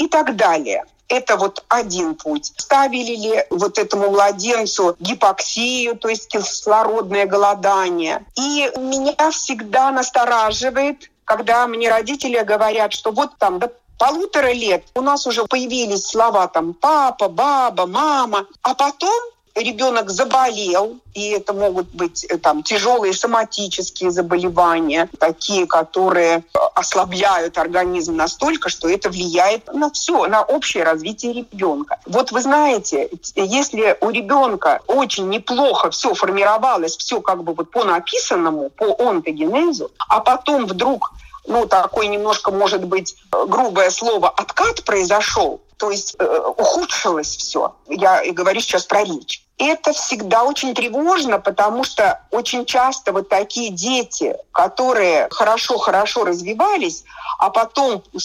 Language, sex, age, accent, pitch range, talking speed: Russian, female, 50-69, native, 195-265 Hz, 125 wpm